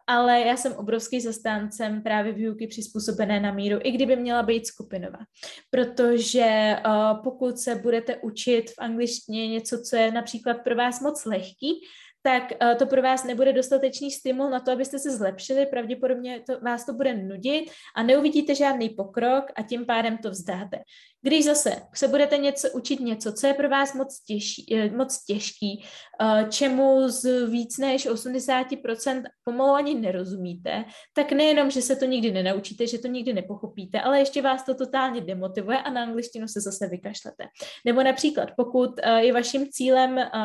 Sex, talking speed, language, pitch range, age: female, 155 wpm, Czech, 220-265 Hz, 20-39